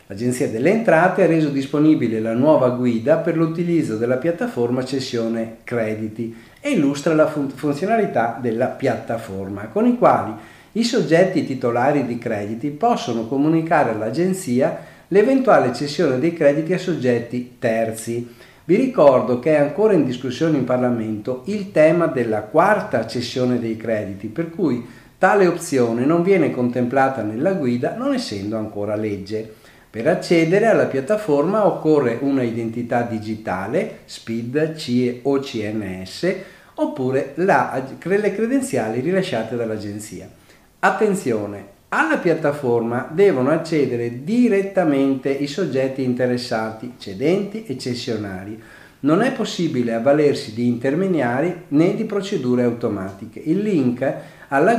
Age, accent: 50-69, native